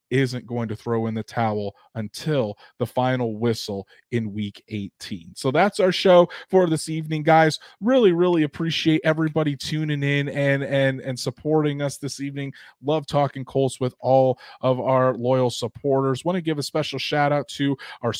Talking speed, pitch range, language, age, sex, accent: 175 wpm, 130-155 Hz, English, 30-49, male, American